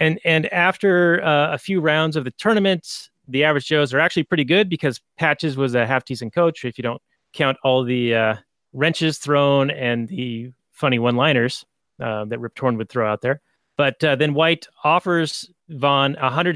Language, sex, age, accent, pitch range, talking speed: English, male, 30-49, American, 125-155 Hz, 180 wpm